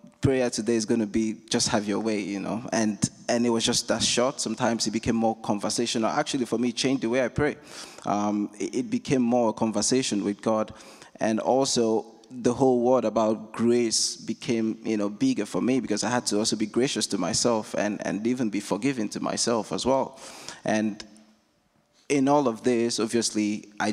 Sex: male